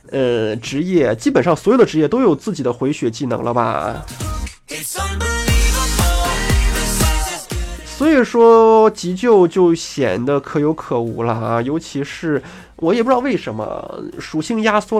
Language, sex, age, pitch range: Chinese, male, 20-39, 120-180 Hz